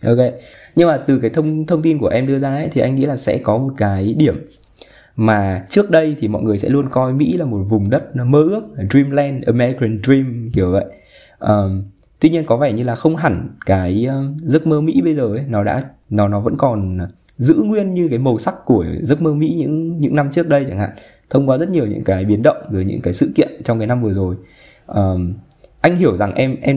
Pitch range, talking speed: 105-145 Hz, 240 wpm